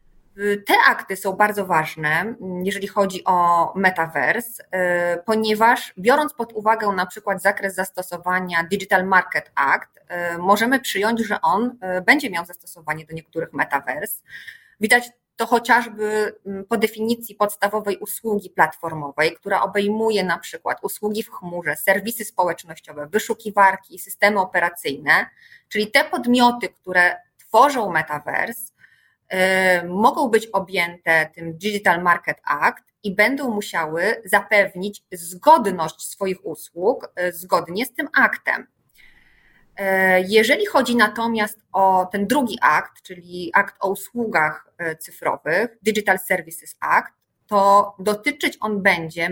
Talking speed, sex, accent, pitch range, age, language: 115 wpm, female, native, 175-220 Hz, 20-39, Polish